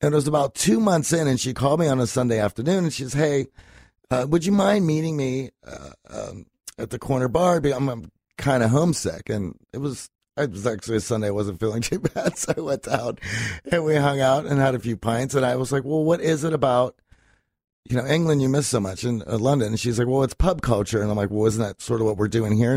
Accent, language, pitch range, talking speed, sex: American, English, 110-145 Hz, 260 wpm, male